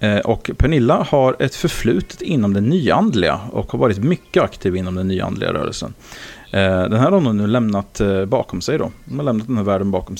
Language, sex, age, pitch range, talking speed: English, male, 30-49, 95-125 Hz, 195 wpm